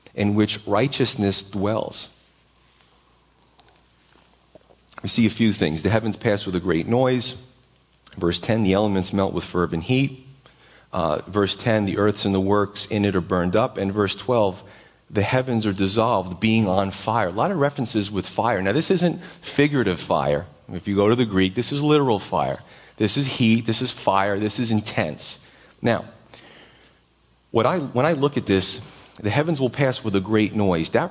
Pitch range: 100-125 Hz